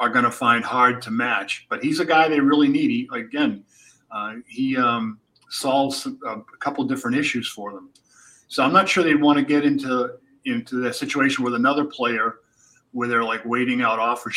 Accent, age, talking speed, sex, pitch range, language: American, 40-59, 195 wpm, male, 125-165 Hz, English